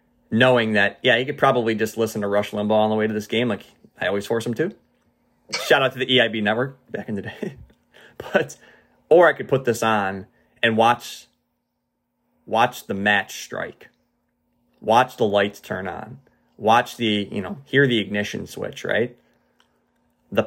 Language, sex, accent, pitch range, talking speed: English, male, American, 100-120 Hz, 180 wpm